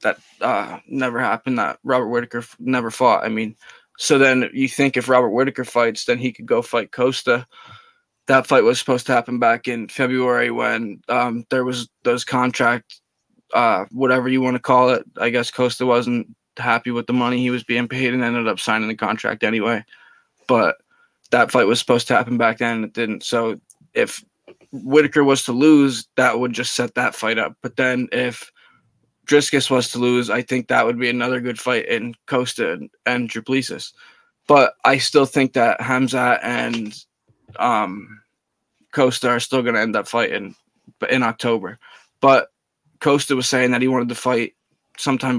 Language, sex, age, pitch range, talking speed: English, male, 20-39, 120-130 Hz, 185 wpm